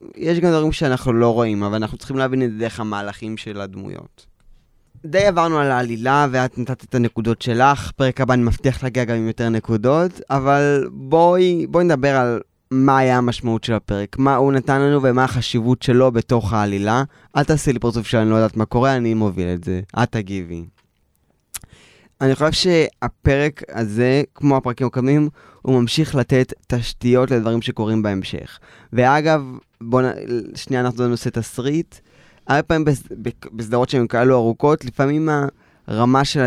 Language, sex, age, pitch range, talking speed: Hebrew, male, 20-39, 115-135 Hz, 165 wpm